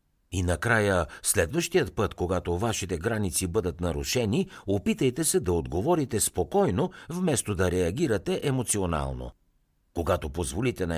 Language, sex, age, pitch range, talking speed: Bulgarian, male, 60-79, 85-120 Hz, 115 wpm